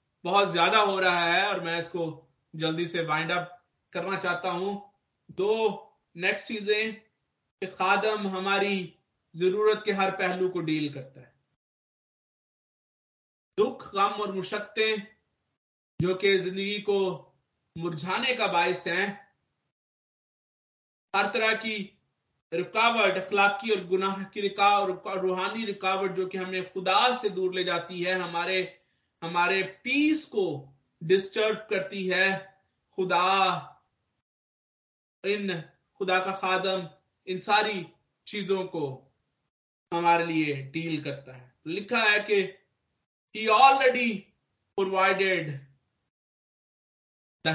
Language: Hindi